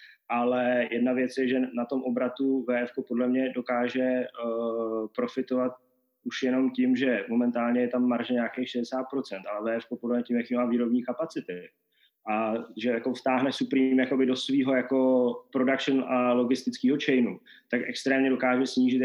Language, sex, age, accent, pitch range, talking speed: Czech, male, 20-39, native, 120-130 Hz, 155 wpm